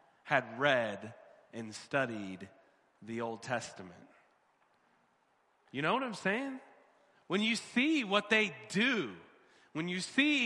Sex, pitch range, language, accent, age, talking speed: male, 125-200 Hz, English, American, 30-49, 120 wpm